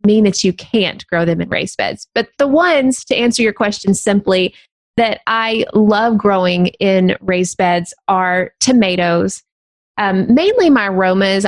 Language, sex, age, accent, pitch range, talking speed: English, female, 20-39, American, 180-215 Hz, 155 wpm